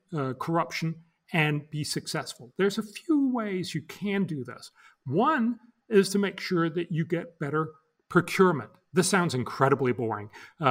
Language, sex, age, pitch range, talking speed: English, male, 40-59, 135-185 Hz, 150 wpm